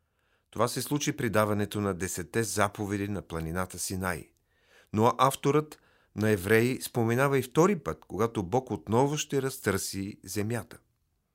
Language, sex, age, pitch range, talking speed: Bulgarian, male, 40-59, 95-125 Hz, 130 wpm